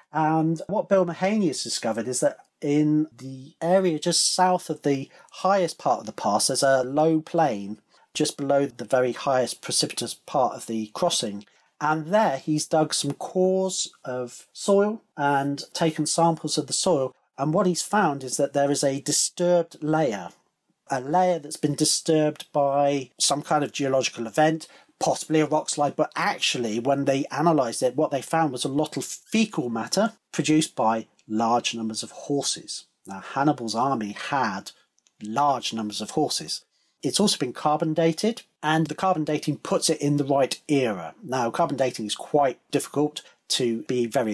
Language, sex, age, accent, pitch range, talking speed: English, male, 40-59, British, 135-170 Hz, 170 wpm